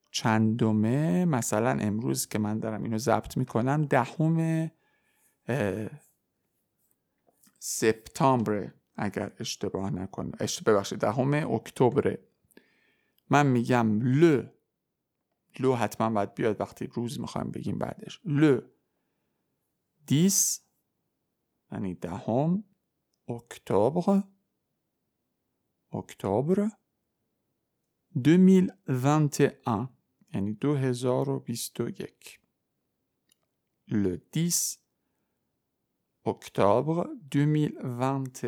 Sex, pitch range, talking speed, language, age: male, 110-160 Hz, 65 wpm, Persian, 50-69